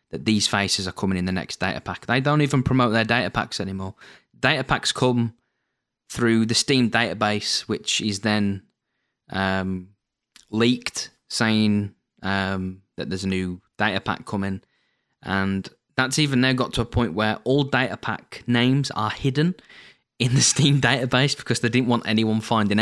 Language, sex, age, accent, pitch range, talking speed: English, male, 20-39, British, 100-125 Hz, 165 wpm